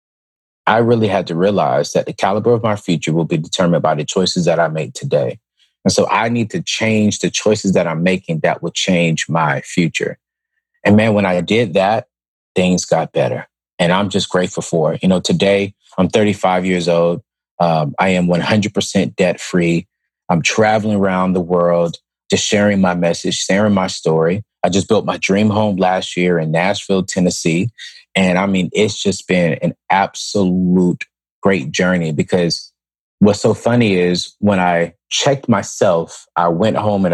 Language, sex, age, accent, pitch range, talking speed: English, male, 30-49, American, 90-110 Hz, 180 wpm